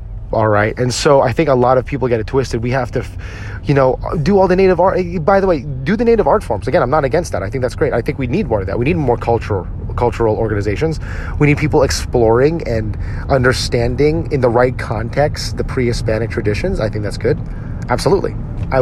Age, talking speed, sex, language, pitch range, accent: 30-49, 225 wpm, male, English, 110-135 Hz, American